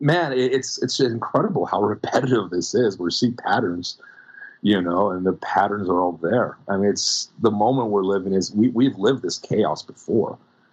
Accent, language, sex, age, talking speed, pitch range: American, English, male, 40-59, 190 wpm, 80-100 Hz